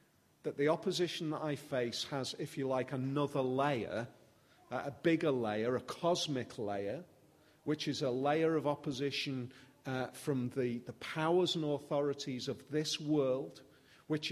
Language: English